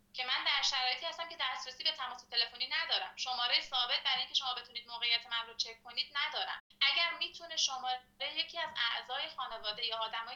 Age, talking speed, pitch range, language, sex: 30-49, 185 wpm, 225-275 Hz, Persian, female